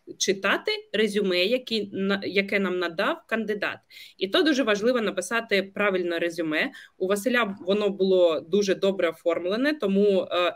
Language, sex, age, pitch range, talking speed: Ukrainian, female, 20-39, 185-235 Hz, 135 wpm